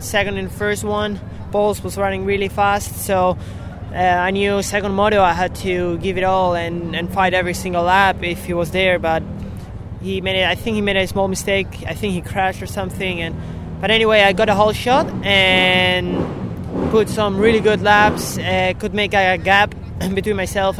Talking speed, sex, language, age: 200 wpm, male, English, 20-39